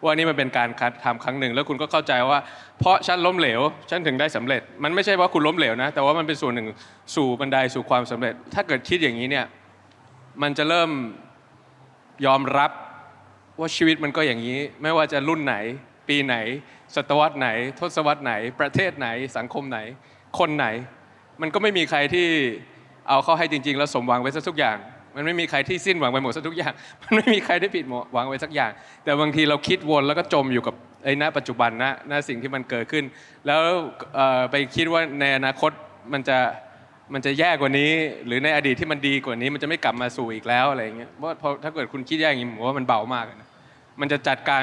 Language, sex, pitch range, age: Thai, male, 130-155 Hz, 20-39